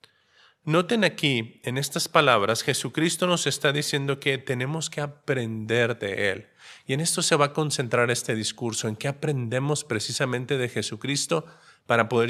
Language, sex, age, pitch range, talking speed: Spanish, male, 40-59, 115-150 Hz, 155 wpm